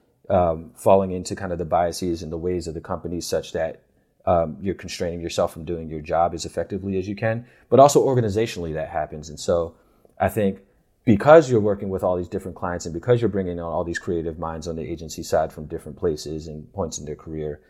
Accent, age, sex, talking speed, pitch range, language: American, 30-49, male, 225 wpm, 80-105 Hz, English